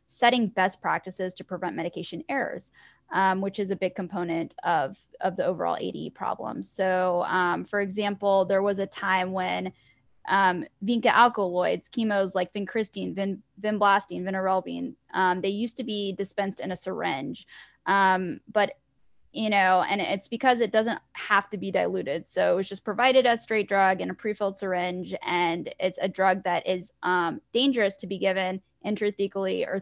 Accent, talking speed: American, 170 wpm